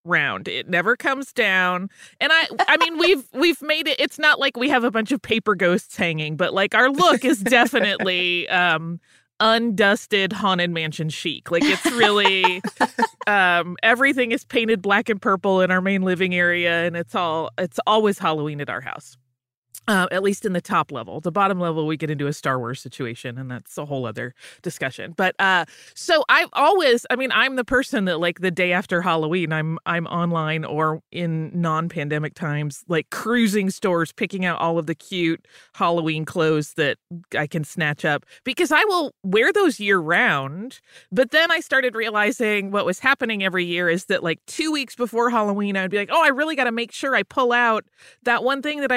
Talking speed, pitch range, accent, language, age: 195 wpm, 165-240 Hz, American, English, 30-49